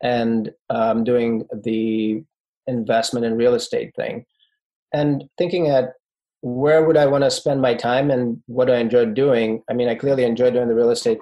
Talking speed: 185 wpm